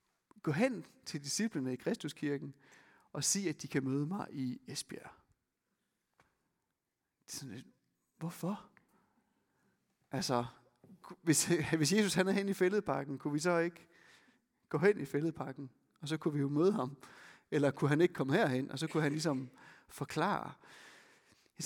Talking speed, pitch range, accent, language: 145 wpm, 145-205 Hz, native, Danish